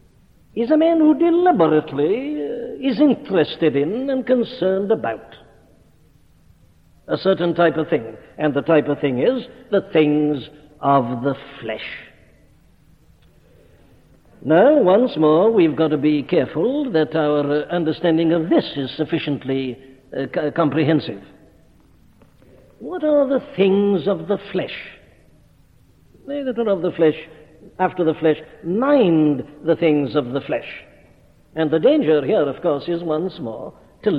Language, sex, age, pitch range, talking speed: English, male, 60-79, 145-180 Hz, 135 wpm